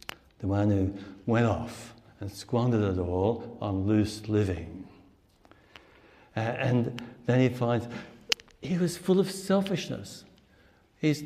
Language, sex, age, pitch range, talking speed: English, male, 60-79, 110-155 Hz, 115 wpm